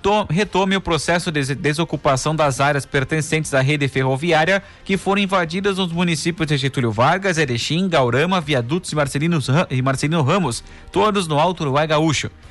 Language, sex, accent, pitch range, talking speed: Portuguese, male, Brazilian, 140-175 Hz, 145 wpm